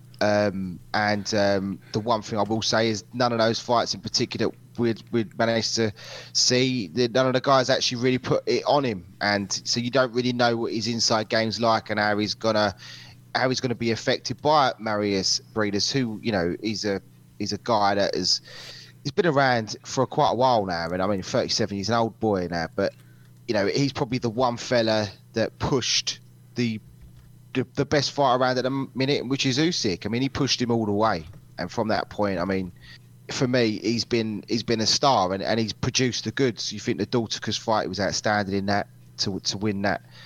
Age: 20-39